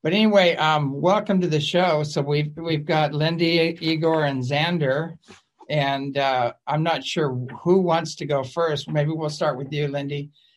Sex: male